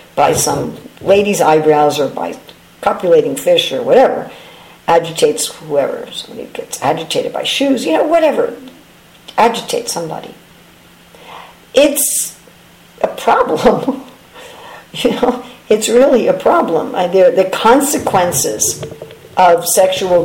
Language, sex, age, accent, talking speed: English, female, 50-69, American, 105 wpm